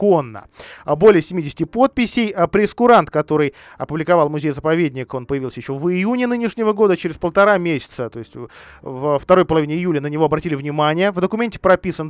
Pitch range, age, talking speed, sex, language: 140-185 Hz, 20-39, 160 wpm, male, Russian